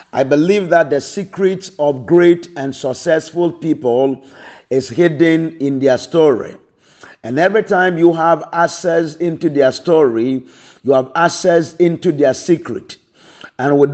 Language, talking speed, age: English, 140 wpm, 50-69